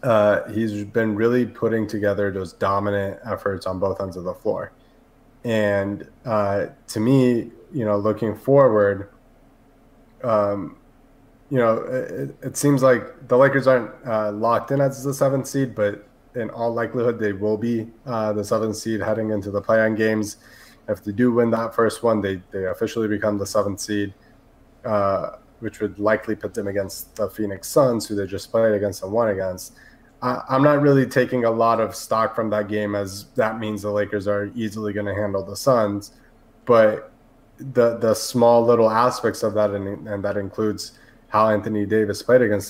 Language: English